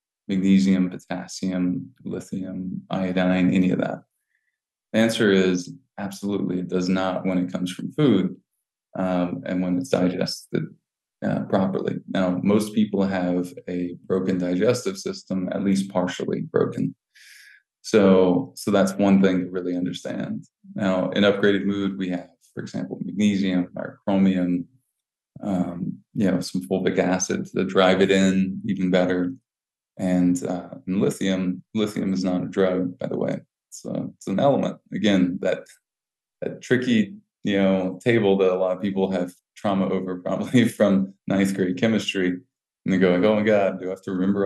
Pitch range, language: 90-100 Hz, English